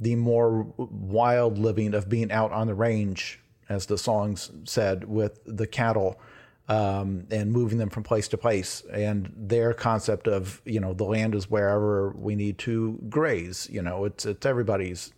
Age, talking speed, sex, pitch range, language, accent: 40-59, 175 wpm, male, 105-120 Hz, English, American